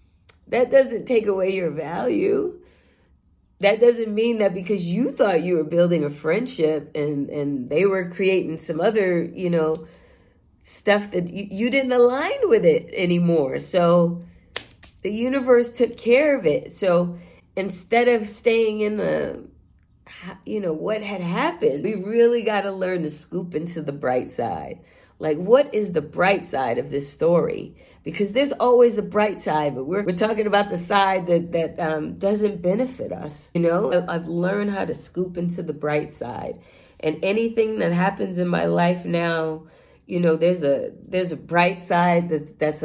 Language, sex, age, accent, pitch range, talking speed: English, female, 40-59, American, 160-205 Hz, 170 wpm